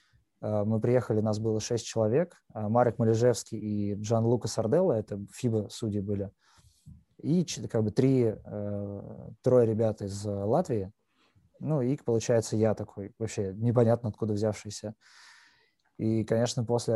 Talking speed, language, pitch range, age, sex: 125 wpm, Russian, 105-120 Hz, 20-39, male